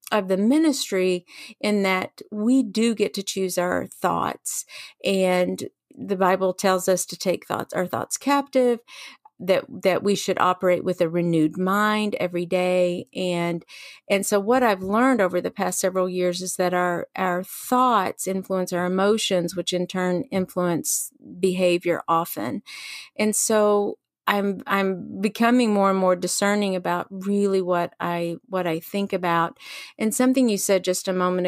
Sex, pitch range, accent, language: female, 180-220 Hz, American, English